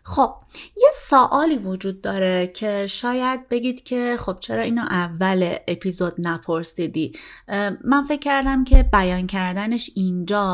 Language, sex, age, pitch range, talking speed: Persian, female, 30-49, 180-245 Hz, 130 wpm